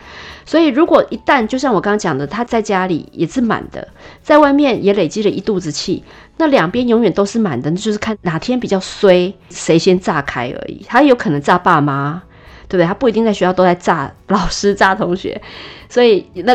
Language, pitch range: Chinese, 170-215 Hz